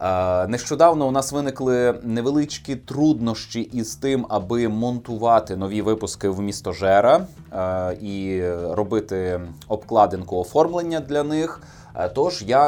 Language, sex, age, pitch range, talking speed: Ukrainian, male, 20-39, 105-145 Hz, 110 wpm